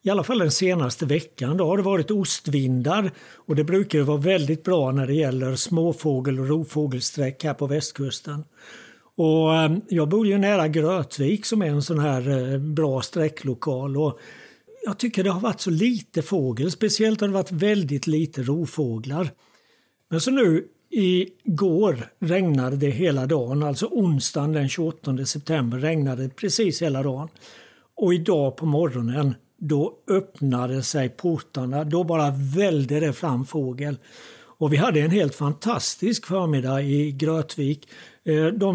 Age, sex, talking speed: 60-79, male, 150 wpm